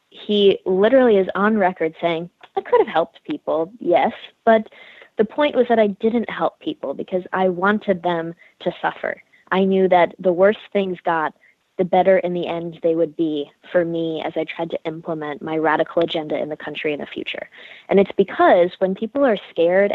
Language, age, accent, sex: English, 20-39, American, female